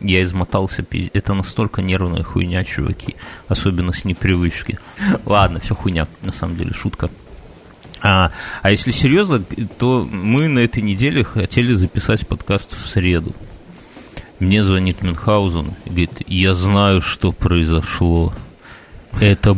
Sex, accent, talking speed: male, native, 125 wpm